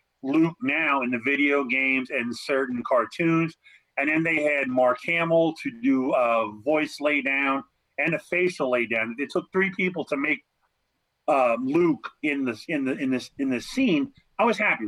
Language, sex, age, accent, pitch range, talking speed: English, male, 40-59, American, 135-165 Hz, 185 wpm